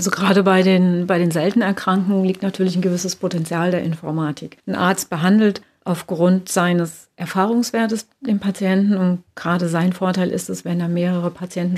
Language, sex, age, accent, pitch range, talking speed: German, female, 40-59, German, 170-195 Hz, 170 wpm